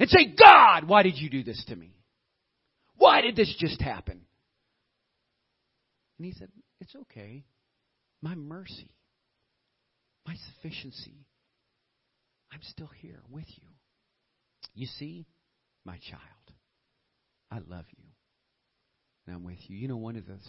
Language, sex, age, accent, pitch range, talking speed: English, male, 50-69, American, 110-145 Hz, 130 wpm